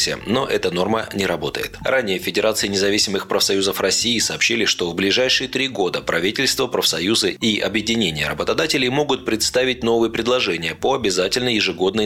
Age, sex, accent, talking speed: 20-39, male, native, 140 wpm